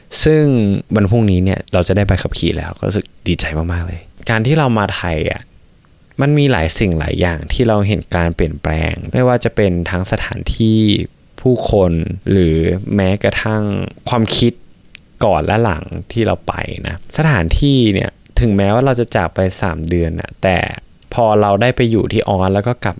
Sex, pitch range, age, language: male, 95-120 Hz, 20-39, Thai